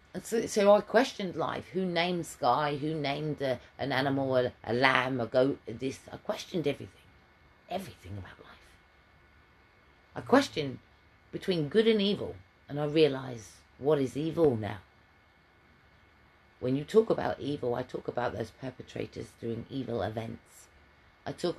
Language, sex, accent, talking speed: English, female, British, 145 wpm